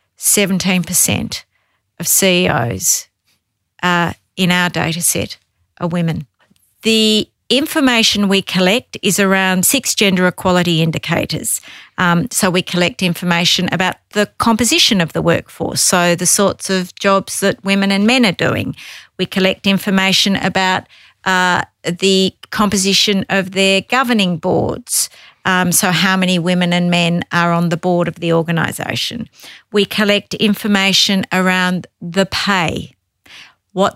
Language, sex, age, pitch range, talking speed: English, female, 50-69, 170-200 Hz, 130 wpm